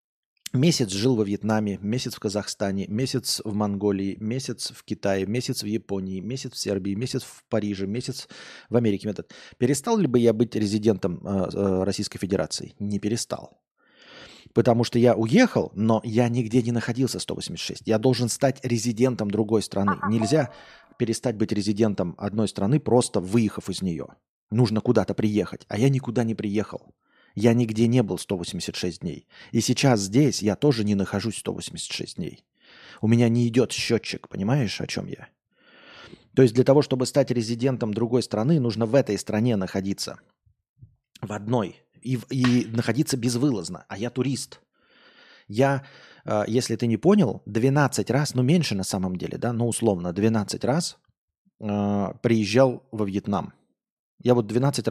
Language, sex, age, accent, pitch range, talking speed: Russian, male, 20-39, native, 105-125 Hz, 155 wpm